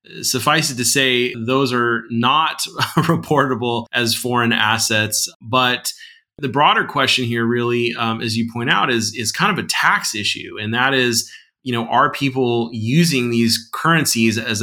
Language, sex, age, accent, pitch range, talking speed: English, male, 30-49, American, 110-125 Hz, 165 wpm